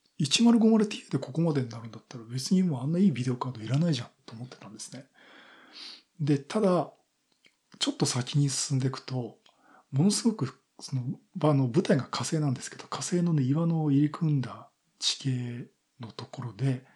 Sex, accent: male, native